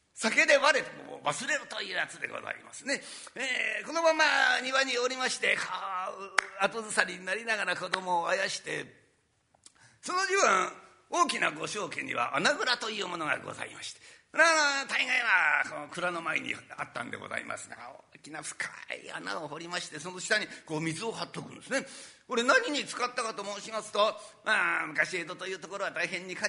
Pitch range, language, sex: 195-275 Hz, Japanese, male